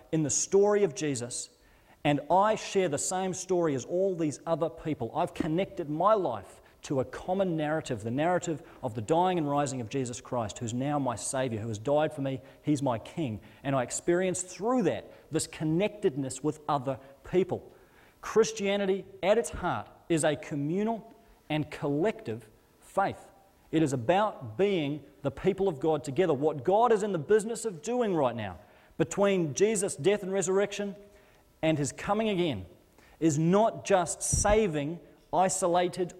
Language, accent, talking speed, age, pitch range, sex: English, Australian, 165 wpm, 40-59, 140-190 Hz, male